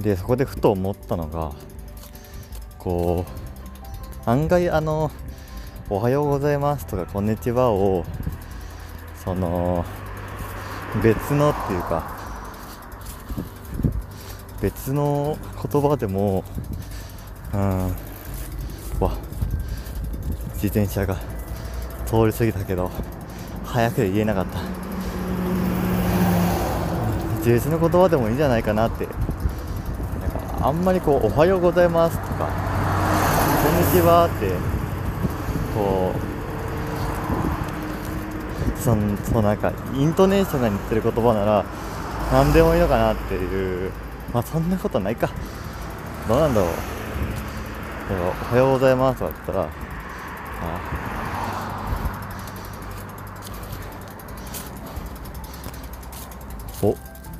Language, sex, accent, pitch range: Japanese, male, native, 85-115 Hz